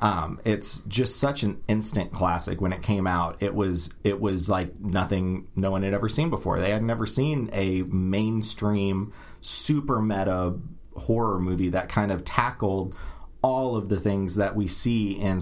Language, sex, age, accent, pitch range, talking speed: English, male, 30-49, American, 90-105 Hz, 175 wpm